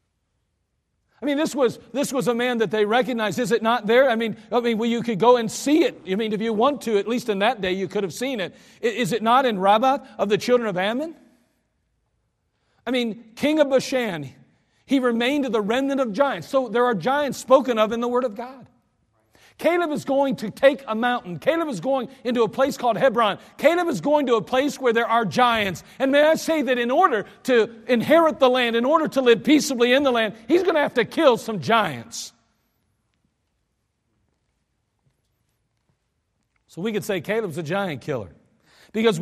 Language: English